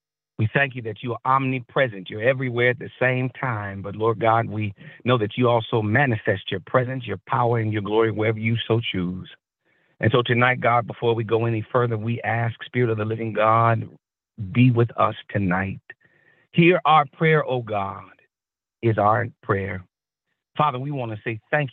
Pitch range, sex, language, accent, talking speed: 105-130 Hz, male, English, American, 185 wpm